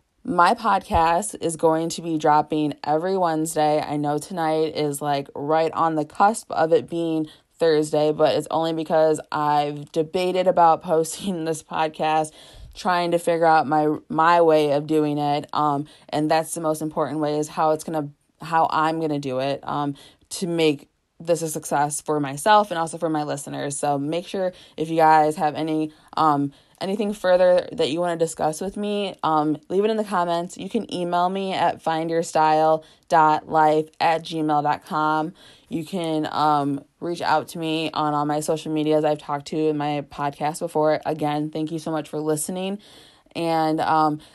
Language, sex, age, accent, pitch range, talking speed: English, female, 20-39, American, 150-170 Hz, 180 wpm